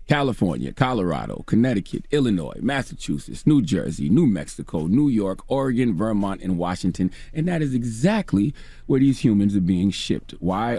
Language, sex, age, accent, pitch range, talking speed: English, male, 30-49, American, 95-155 Hz, 145 wpm